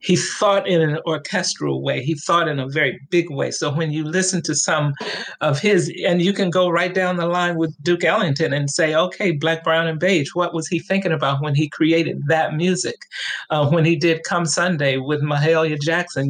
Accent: American